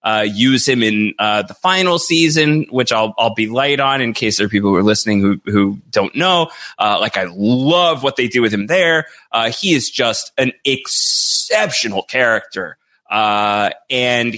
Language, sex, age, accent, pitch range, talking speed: English, male, 30-49, American, 115-175 Hz, 190 wpm